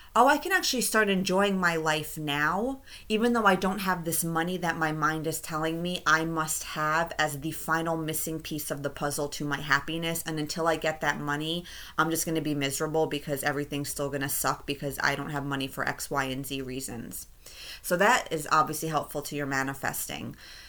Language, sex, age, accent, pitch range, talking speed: English, female, 30-49, American, 140-165 Hz, 210 wpm